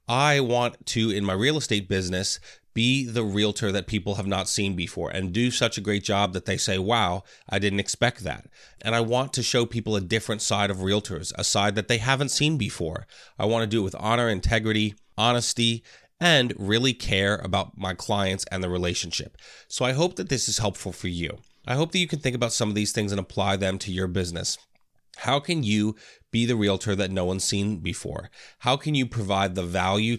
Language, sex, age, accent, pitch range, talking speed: English, male, 30-49, American, 100-120 Hz, 220 wpm